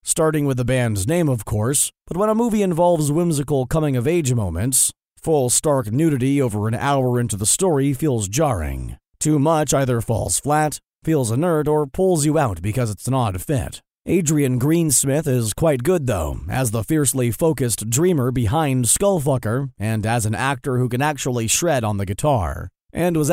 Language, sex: English, male